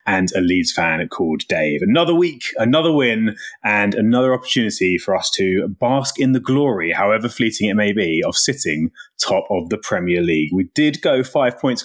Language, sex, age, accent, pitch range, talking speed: English, male, 30-49, British, 110-150 Hz, 185 wpm